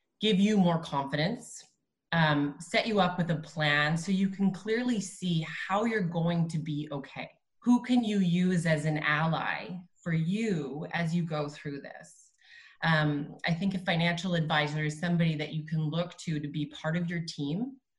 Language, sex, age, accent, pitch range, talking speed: English, female, 20-39, American, 155-195 Hz, 185 wpm